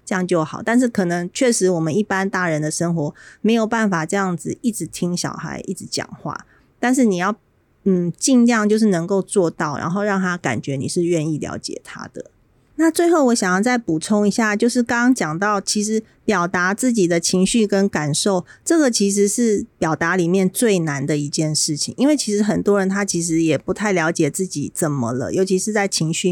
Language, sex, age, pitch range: Chinese, female, 30-49, 170-220 Hz